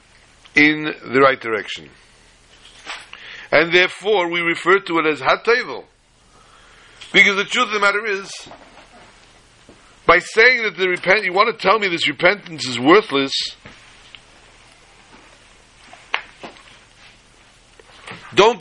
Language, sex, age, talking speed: English, male, 60-79, 110 wpm